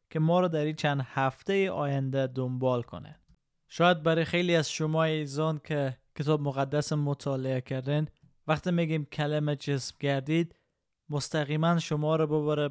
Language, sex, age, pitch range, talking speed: Persian, male, 20-39, 130-160 Hz, 140 wpm